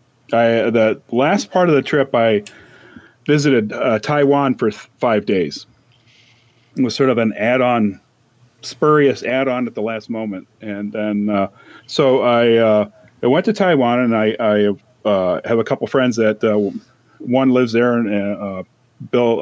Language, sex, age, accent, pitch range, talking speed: English, male, 40-59, American, 110-130 Hz, 170 wpm